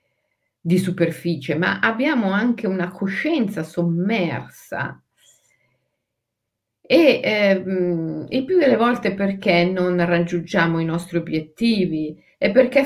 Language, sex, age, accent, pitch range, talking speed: Italian, female, 50-69, native, 165-230 Hz, 100 wpm